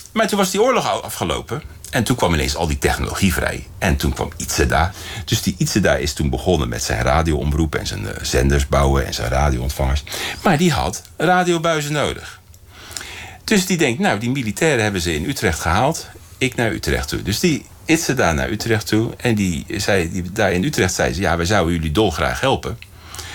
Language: Dutch